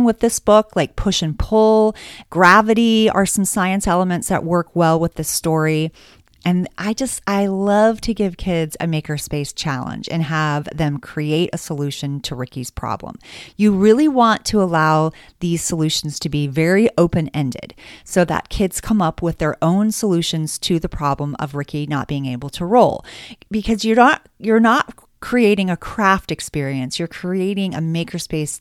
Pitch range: 155-205 Hz